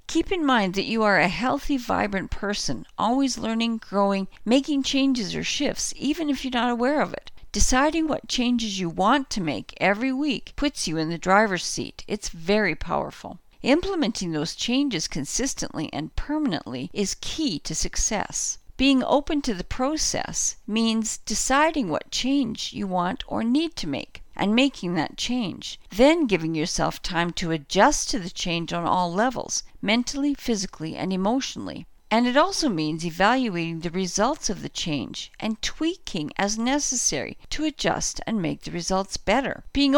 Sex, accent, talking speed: female, American, 165 wpm